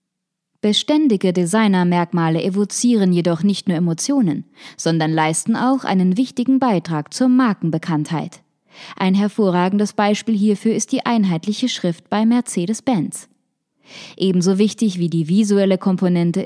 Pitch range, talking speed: 170-220 Hz, 115 wpm